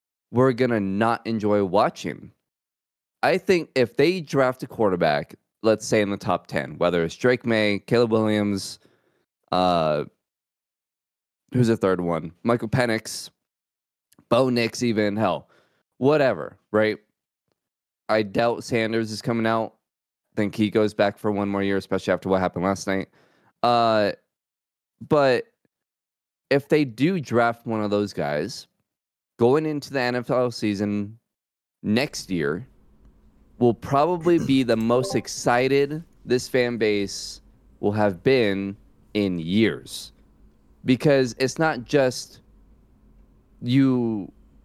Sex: male